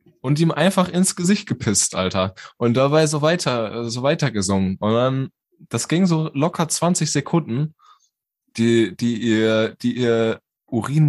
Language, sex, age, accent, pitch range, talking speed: German, male, 20-39, German, 115-155 Hz, 160 wpm